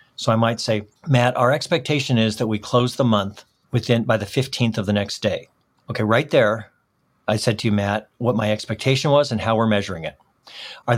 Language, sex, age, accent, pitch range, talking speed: English, male, 50-69, American, 110-140 Hz, 215 wpm